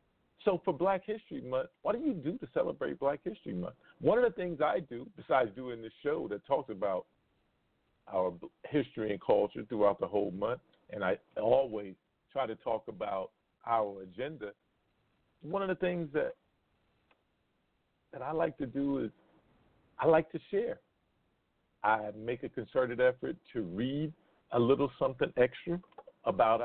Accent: American